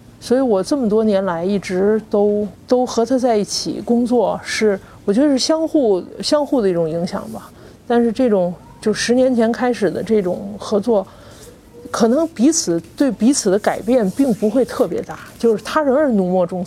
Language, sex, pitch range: Chinese, male, 195-250 Hz